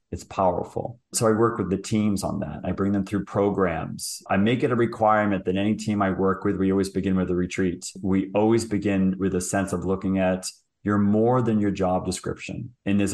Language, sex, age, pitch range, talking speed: English, male, 30-49, 95-110 Hz, 225 wpm